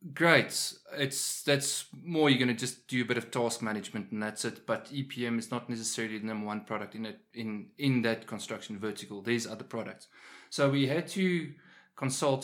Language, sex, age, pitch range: English, male, 20-39, 100-130 Hz